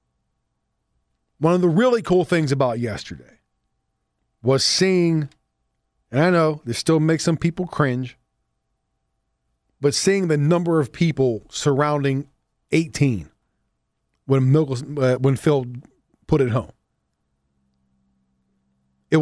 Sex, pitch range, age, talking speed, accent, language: male, 110-170 Hz, 40-59, 110 wpm, American, English